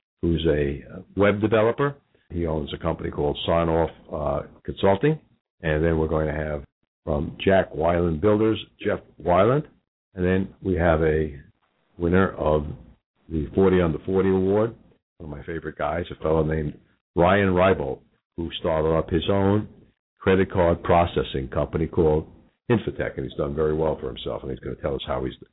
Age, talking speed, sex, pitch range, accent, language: 60-79, 170 wpm, male, 80-95 Hz, American, English